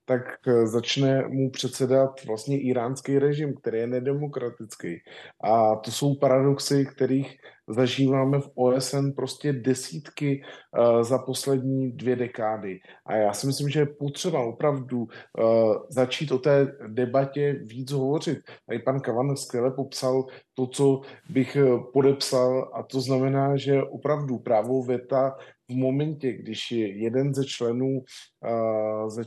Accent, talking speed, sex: native, 125 wpm, male